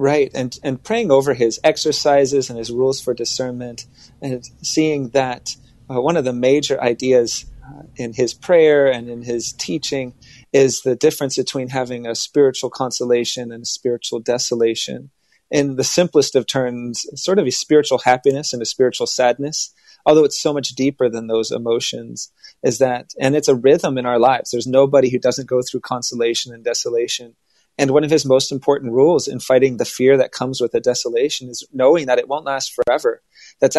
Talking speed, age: 185 wpm, 30-49